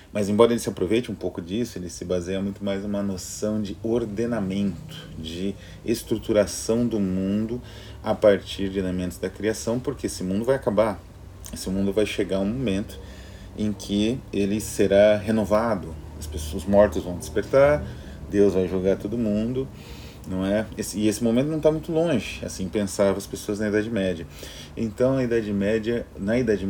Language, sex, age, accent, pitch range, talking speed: Portuguese, male, 30-49, Brazilian, 90-105 Hz, 170 wpm